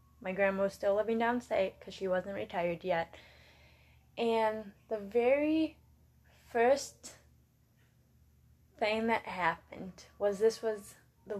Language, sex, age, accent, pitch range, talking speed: English, female, 10-29, American, 185-225 Hz, 115 wpm